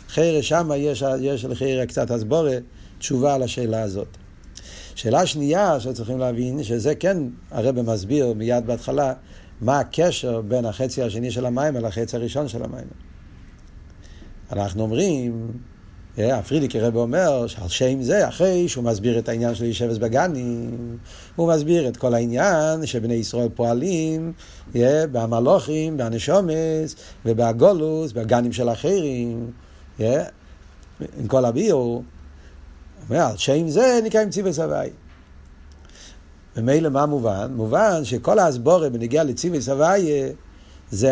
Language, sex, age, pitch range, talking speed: Hebrew, male, 50-69, 105-155 Hz, 120 wpm